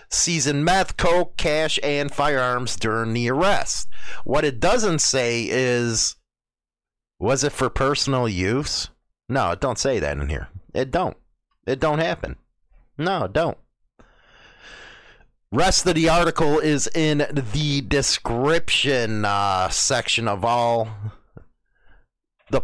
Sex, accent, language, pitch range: male, American, English, 115-160 Hz